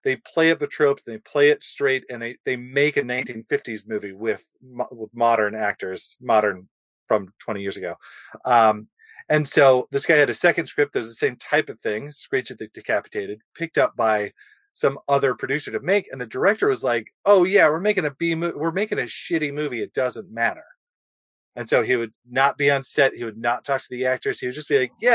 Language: English